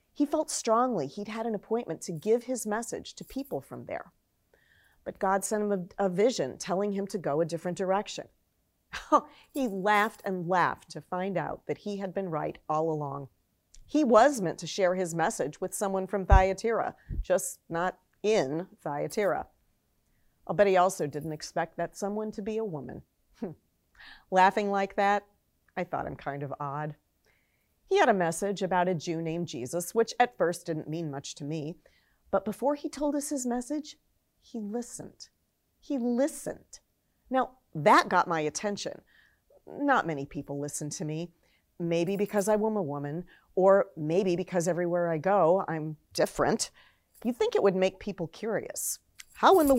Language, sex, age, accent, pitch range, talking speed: English, female, 40-59, American, 160-215 Hz, 170 wpm